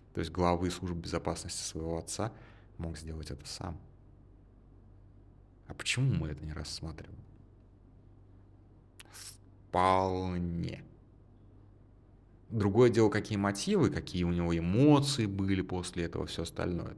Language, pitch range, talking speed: Russian, 85-105 Hz, 110 wpm